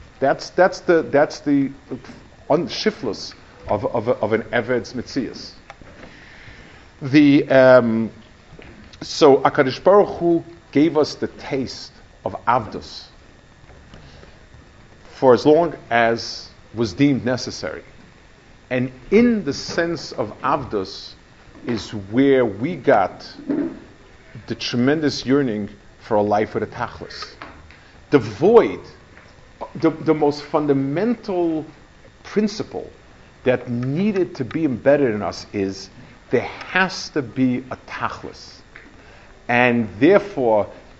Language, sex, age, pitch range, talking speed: English, male, 50-69, 120-150 Hz, 105 wpm